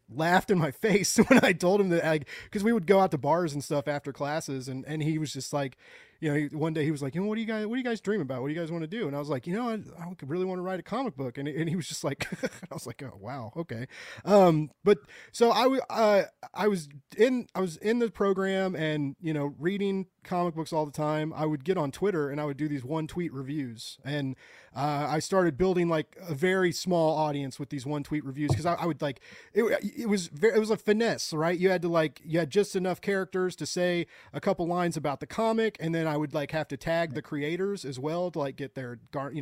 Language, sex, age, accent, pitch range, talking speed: English, male, 30-49, American, 145-195 Hz, 270 wpm